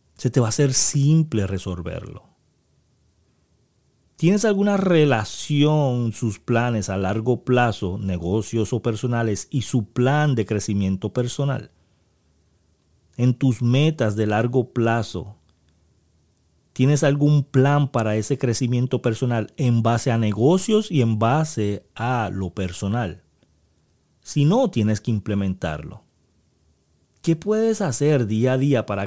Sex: male